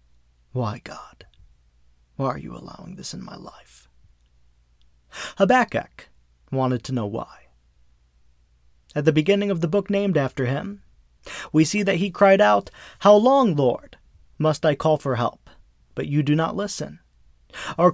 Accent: American